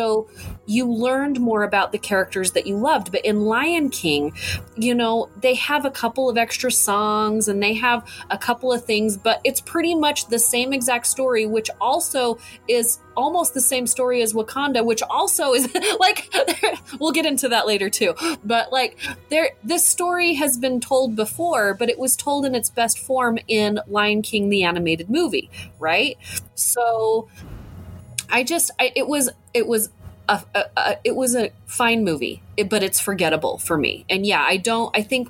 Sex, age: female, 20-39